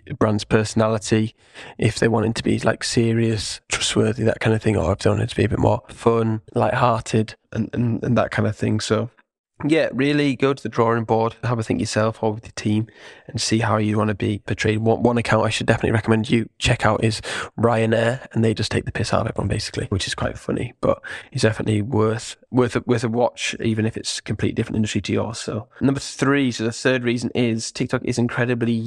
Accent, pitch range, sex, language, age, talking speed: British, 110-120 Hz, male, English, 10-29, 235 wpm